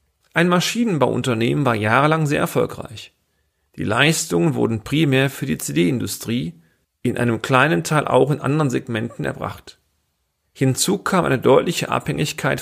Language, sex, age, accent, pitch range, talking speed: German, male, 40-59, German, 105-150 Hz, 130 wpm